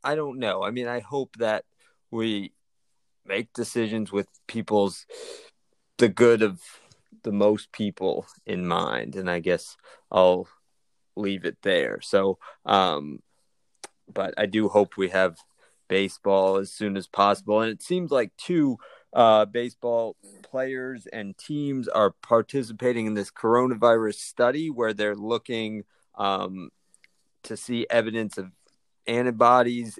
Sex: male